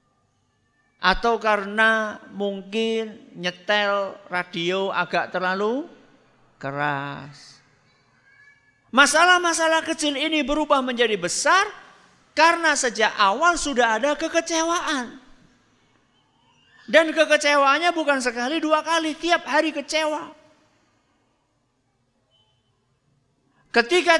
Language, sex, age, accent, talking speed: Indonesian, male, 50-69, native, 75 wpm